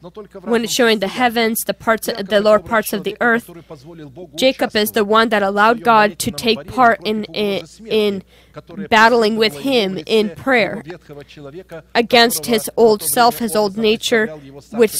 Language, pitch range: English, 190-235 Hz